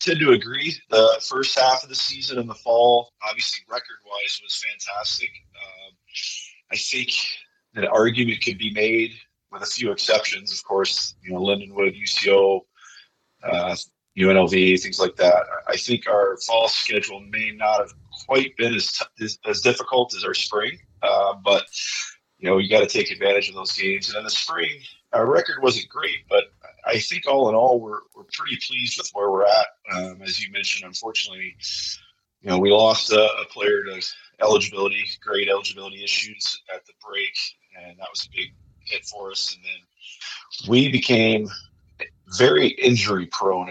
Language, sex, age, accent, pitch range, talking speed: English, male, 40-59, American, 95-120 Hz, 175 wpm